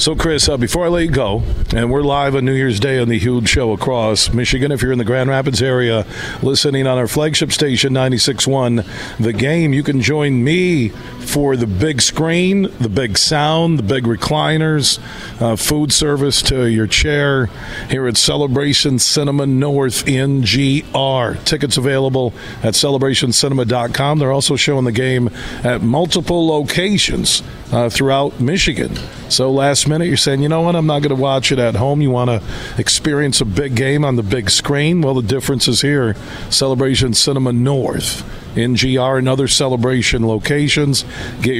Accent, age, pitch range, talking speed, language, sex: American, 50-69, 120-145 Hz, 170 wpm, English, male